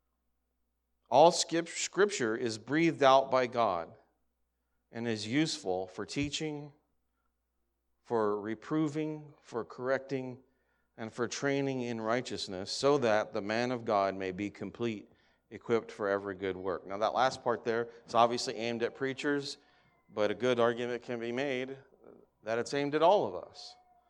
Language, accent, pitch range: English, American, 95-135 Hz